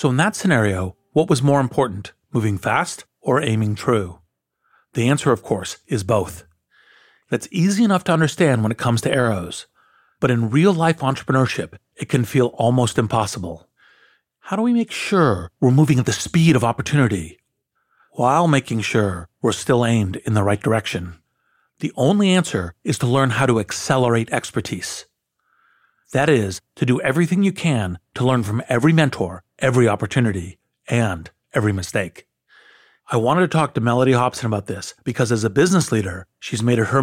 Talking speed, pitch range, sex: 170 wpm, 105-135 Hz, male